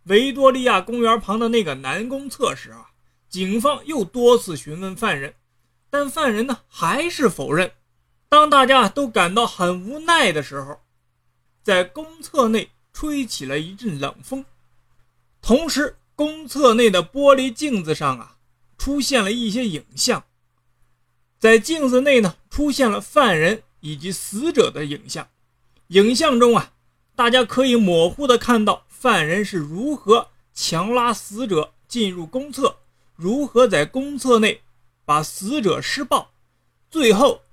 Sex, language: male, Chinese